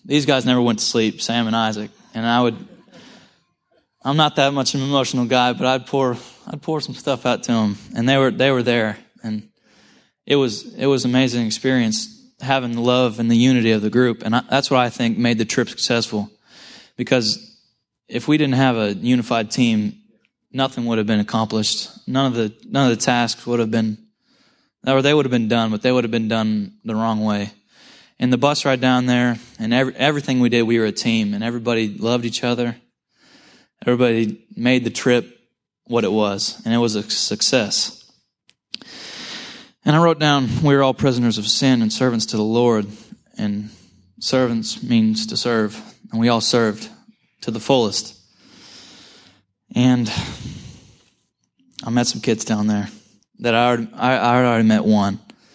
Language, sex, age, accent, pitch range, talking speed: English, male, 20-39, American, 110-135 Hz, 190 wpm